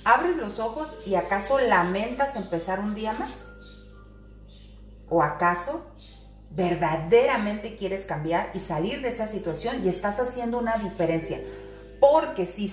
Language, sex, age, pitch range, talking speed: Spanish, female, 40-59, 155-240 Hz, 125 wpm